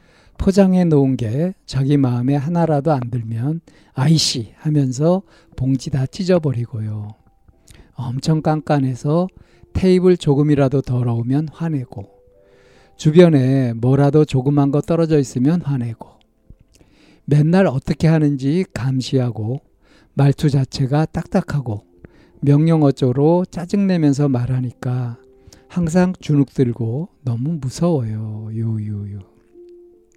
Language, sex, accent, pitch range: Korean, male, native, 125-160 Hz